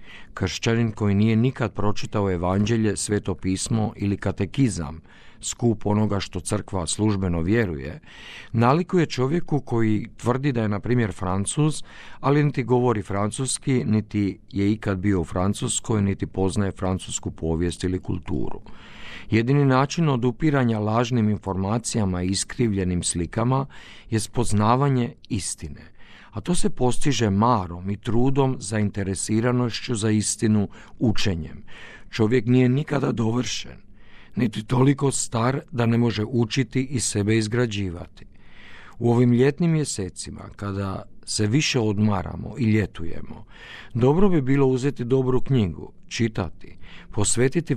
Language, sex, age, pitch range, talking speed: Croatian, male, 50-69, 100-125 Hz, 120 wpm